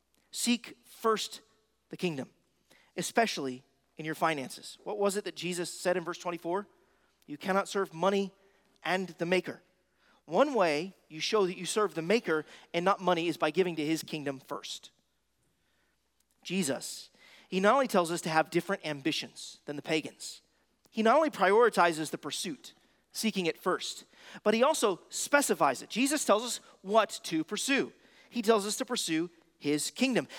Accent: American